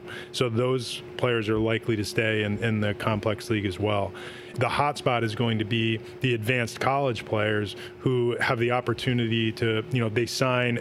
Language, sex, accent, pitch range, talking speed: English, male, American, 115-125 Hz, 185 wpm